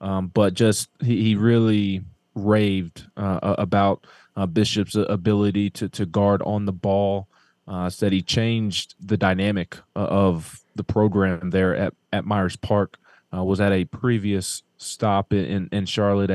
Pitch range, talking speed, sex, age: 95-110 Hz, 150 wpm, male, 20-39